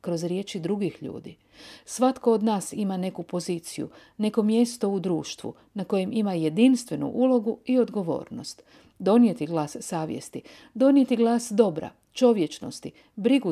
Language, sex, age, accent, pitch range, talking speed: Croatian, female, 50-69, native, 175-240 Hz, 130 wpm